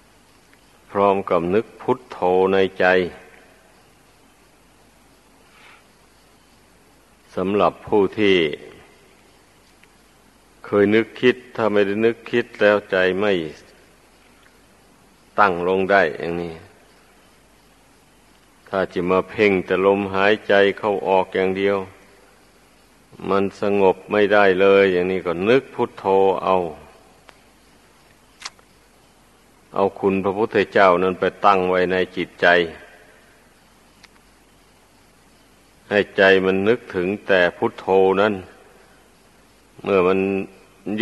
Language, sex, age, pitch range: Thai, male, 60-79, 95-105 Hz